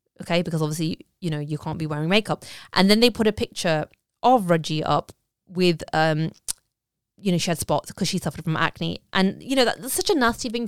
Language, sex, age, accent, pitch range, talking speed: English, female, 20-39, British, 175-215 Hz, 215 wpm